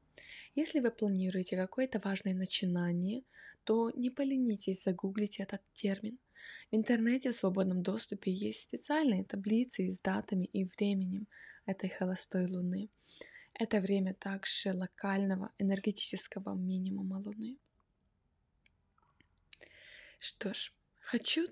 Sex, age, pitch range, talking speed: female, 20-39, 190-240 Hz, 105 wpm